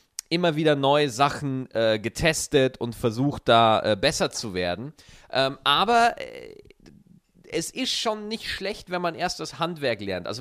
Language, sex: German, male